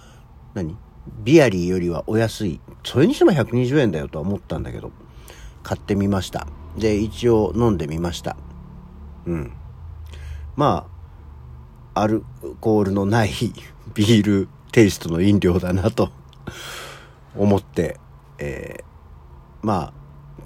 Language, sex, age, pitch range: Japanese, male, 50-69, 85-130 Hz